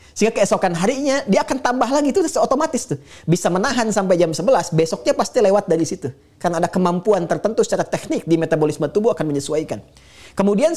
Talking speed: 180 wpm